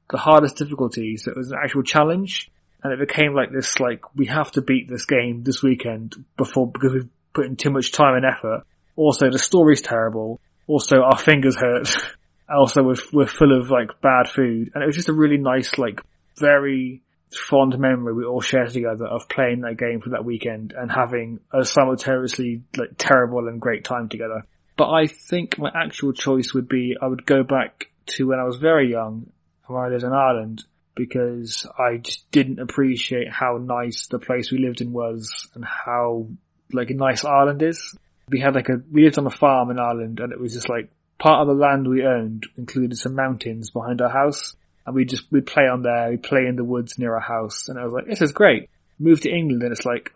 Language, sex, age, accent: English, male, 20-39, British